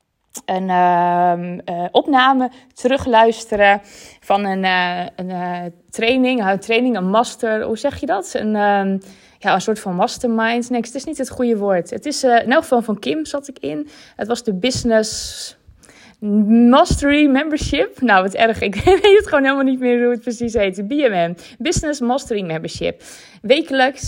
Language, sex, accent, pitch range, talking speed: Dutch, female, Dutch, 195-245 Hz, 170 wpm